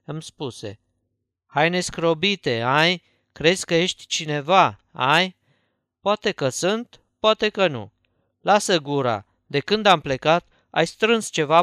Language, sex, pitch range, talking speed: Romanian, male, 130-175 Hz, 130 wpm